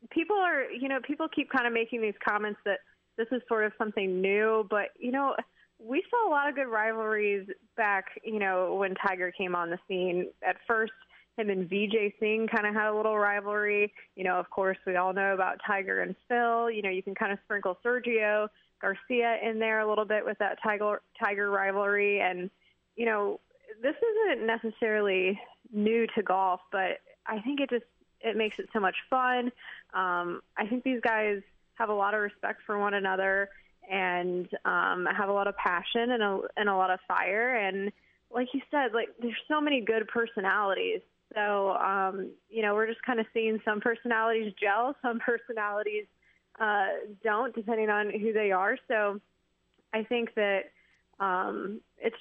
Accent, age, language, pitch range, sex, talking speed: American, 20-39, English, 195-230 Hz, female, 185 wpm